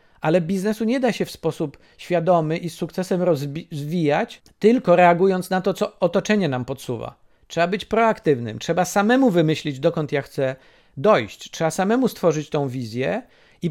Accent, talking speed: native, 160 wpm